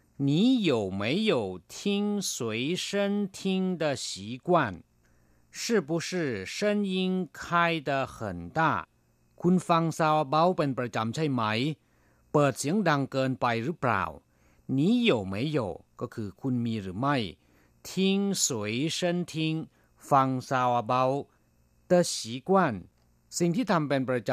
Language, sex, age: Thai, male, 50-69